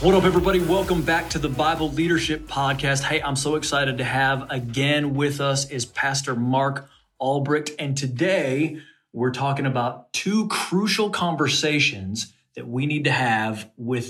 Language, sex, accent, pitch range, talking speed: English, male, American, 120-150 Hz, 160 wpm